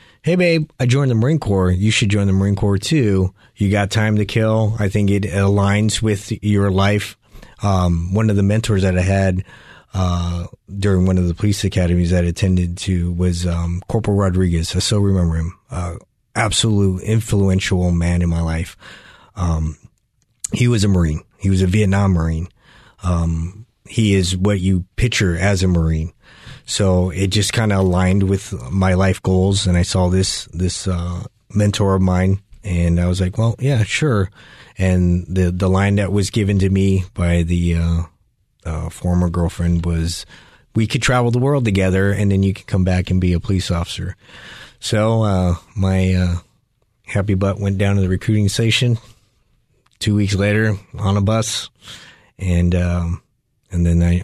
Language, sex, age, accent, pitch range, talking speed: English, male, 30-49, American, 90-105 Hz, 180 wpm